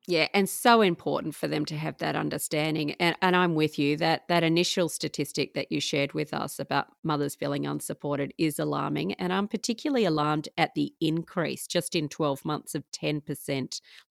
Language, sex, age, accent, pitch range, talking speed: English, female, 40-59, Australian, 150-185 Hz, 185 wpm